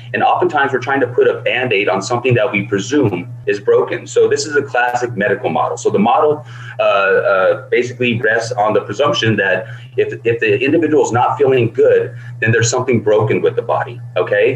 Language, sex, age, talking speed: English, male, 30-49, 200 wpm